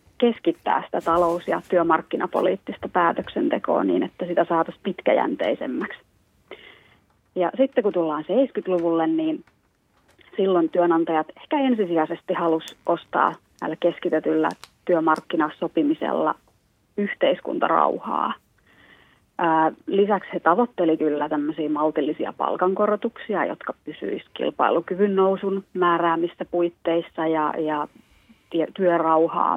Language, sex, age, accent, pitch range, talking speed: Finnish, female, 30-49, native, 160-205 Hz, 85 wpm